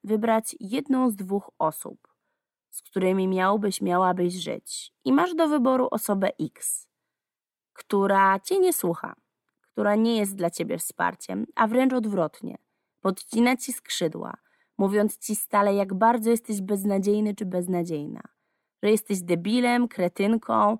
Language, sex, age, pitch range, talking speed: Polish, female, 20-39, 180-225 Hz, 130 wpm